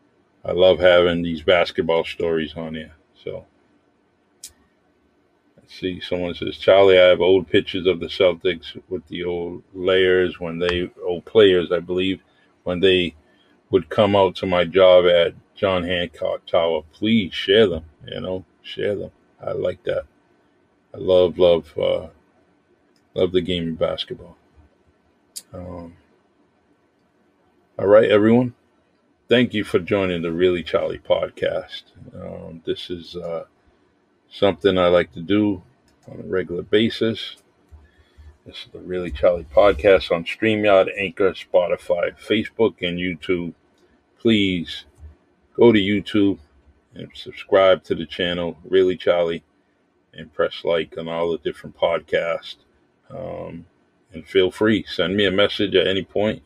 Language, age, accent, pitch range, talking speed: English, 50-69, American, 85-95 Hz, 140 wpm